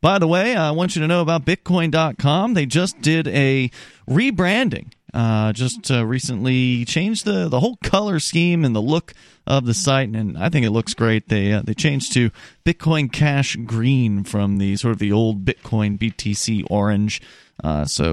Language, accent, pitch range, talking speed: English, American, 110-155 Hz, 190 wpm